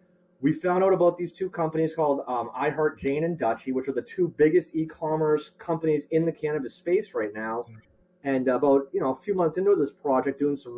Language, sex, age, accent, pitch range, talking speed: English, male, 30-49, American, 135-180 Hz, 205 wpm